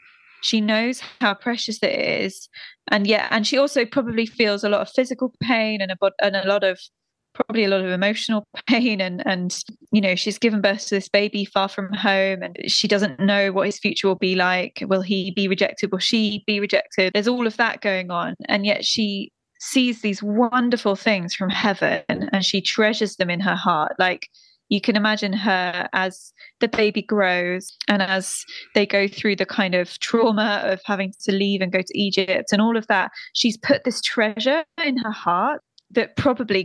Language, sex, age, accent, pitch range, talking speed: English, female, 10-29, British, 195-235 Hz, 200 wpm